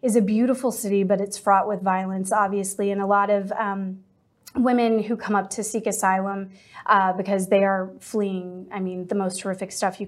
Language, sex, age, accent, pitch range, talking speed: English, female, 20-39, American, 190-205 Hz, 200 wpm